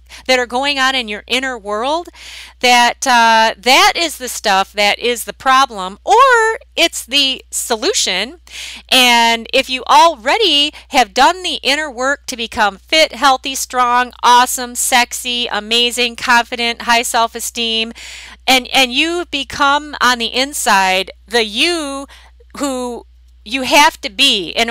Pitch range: 215-275 Hz